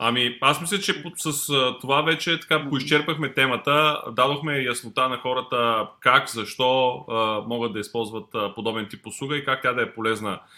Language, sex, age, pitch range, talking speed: Bulgarian, male, 20-39, 100-125 Hz, 160 wpm